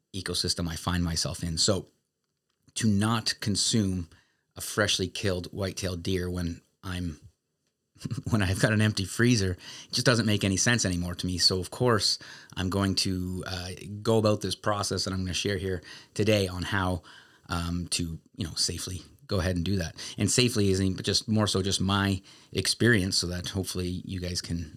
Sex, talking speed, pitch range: male, 185 wpm, 90-110 Hz